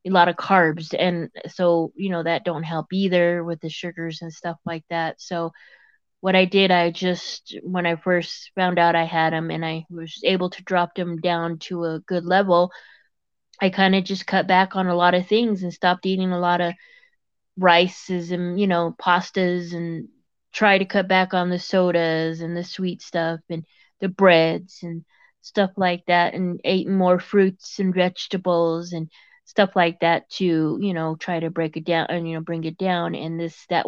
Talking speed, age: 200 wpm, 20-39